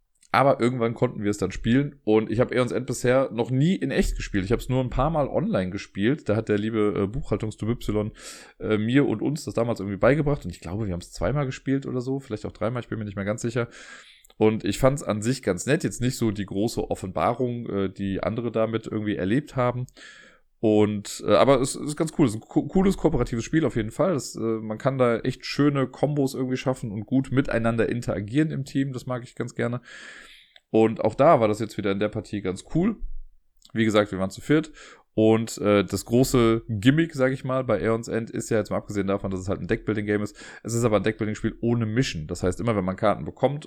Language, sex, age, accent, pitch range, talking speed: German, male, 30-49, German, 105-130 Hz, 240 wpm